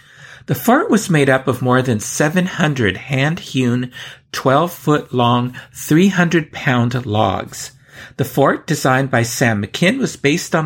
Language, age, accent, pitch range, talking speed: English, 50-69, American, 120-145 Hz, 125 wpm